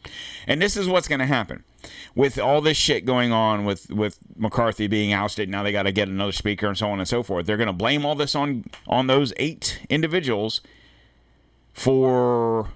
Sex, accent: male, American